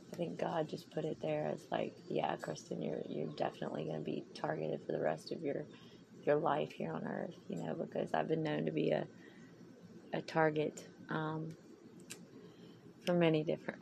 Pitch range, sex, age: 150-185 Hz, female, 30-49